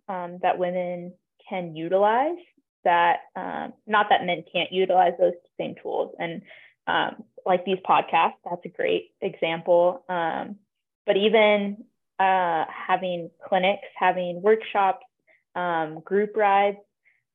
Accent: American